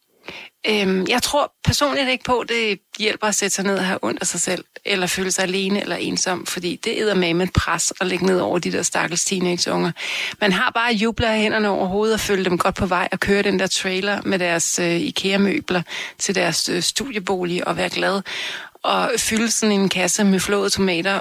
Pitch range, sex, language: 180-215 Hz, female, Danish